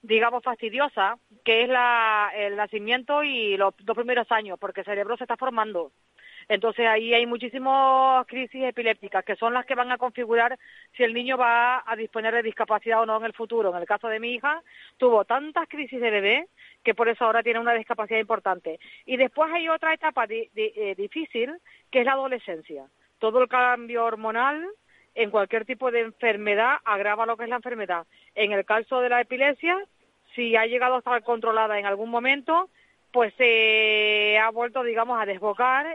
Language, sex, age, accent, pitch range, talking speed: Spanish, female, 40-59, Spanish, 210-255 Hz, 190 wpm